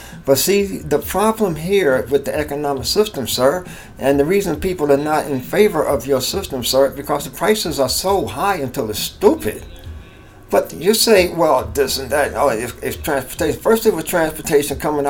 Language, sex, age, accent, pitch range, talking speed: English, male, 50-69, American, 135-185 Hz, 185 wpm